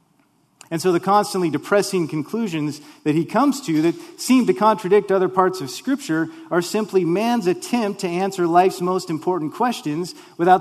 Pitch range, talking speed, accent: 140-185 Hz, 165 wpm, American